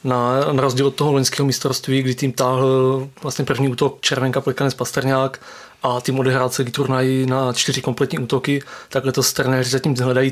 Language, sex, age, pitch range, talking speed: Czech, male, 20-39, 130-140 Hz, 170 wpm